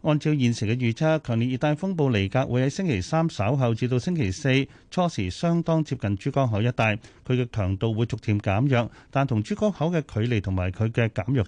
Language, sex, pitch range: Chinese, male, 105-140 Hz